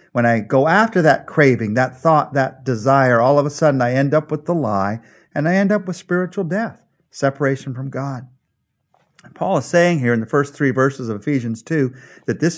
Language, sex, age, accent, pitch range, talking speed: English, male, 50-69, American, 125-170 Hz, 210 wpm